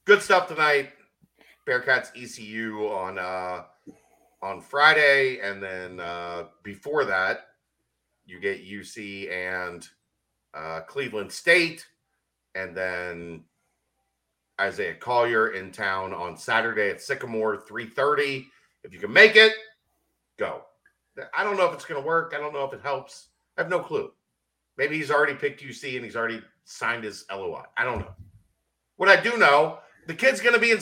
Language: English